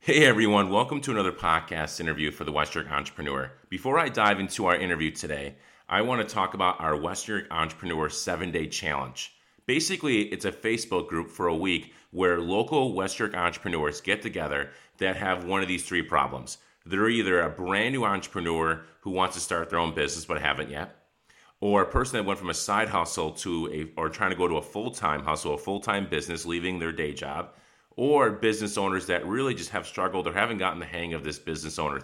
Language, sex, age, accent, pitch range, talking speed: English, male, 30-49, American, 75-95 Hz, 205 wpm